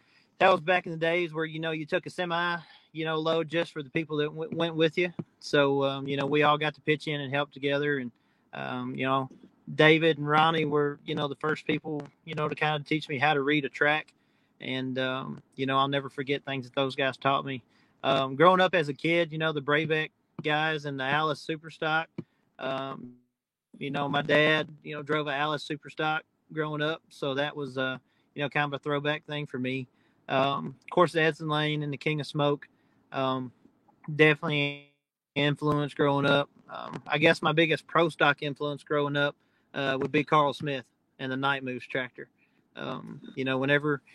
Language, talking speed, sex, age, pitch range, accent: English, 200 wpm, male, 30-49, 140-160 Hz, American